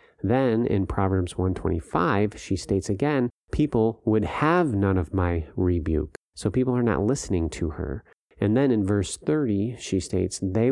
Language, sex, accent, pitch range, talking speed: English, male, American, 90-115 Hz, 175 wpm